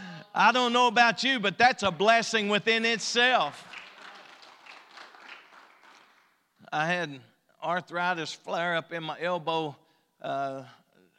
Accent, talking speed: American, 105 wpm